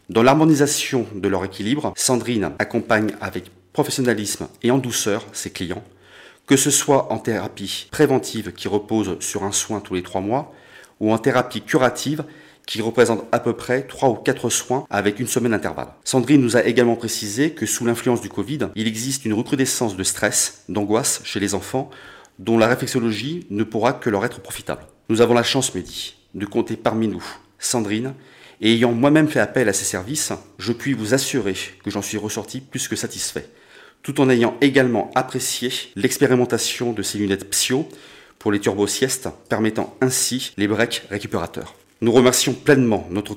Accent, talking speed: French, 175 wpm